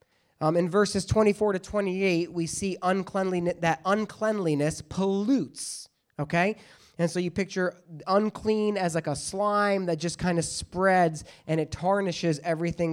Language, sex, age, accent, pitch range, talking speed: English, male, 20-39, American, 165-205 Hz, 140 wpm